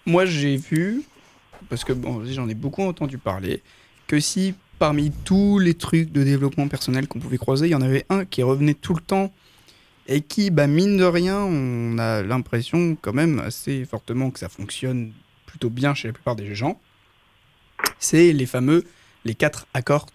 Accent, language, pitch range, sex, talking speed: French, French, 115-155 Hz, male, 185 wpm